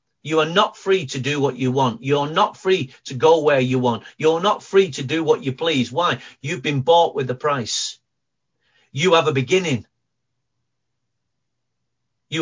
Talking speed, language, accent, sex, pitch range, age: 180 wpm, English, British, male, 135-195 Hz, 40-59